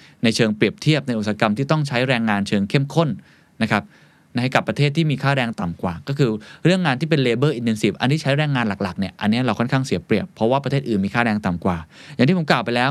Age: 20-39